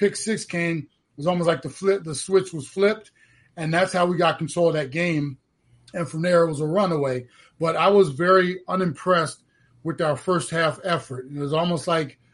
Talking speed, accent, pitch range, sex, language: 210 wpm, American, 150-180 Hz, male, English